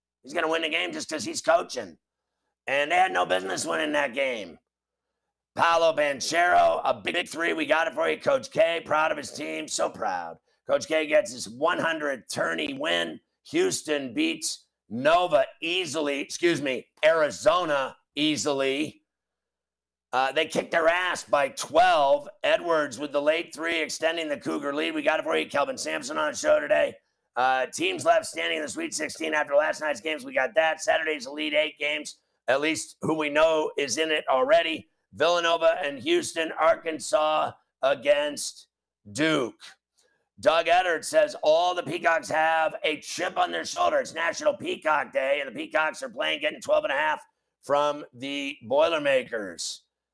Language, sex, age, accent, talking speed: English, male, 50-69, American, 170 wpm